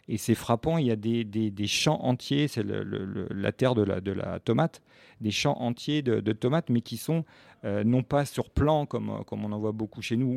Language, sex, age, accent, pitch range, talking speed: French, male, 40-59, French, 110-135 Hz, 255 wpm